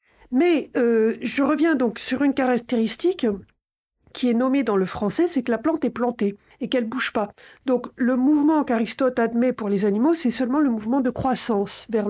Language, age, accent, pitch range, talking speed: French, 50-69, French, 220-275 Hz, 200 wpm